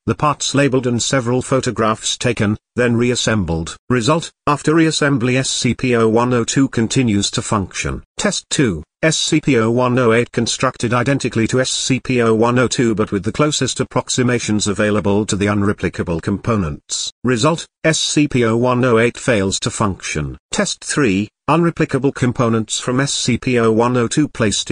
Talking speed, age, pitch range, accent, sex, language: 110 wpm, 40-59, 110-135 Hz, British, male, English